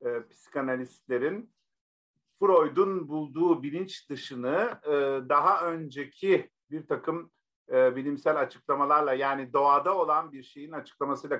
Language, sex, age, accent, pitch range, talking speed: Turkish, male, 50-69, native, 130-170 Hz, 105 wpm